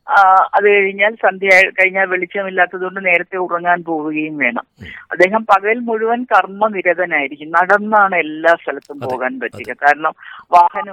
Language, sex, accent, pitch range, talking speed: Malayalam, female, native, 165-215 Hz, 120 wpm